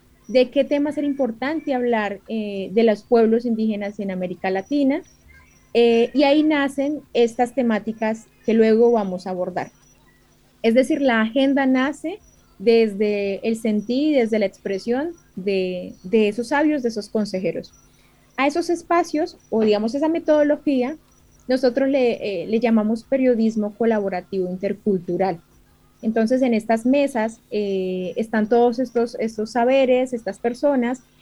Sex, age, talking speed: female, 20-39, 135 wpm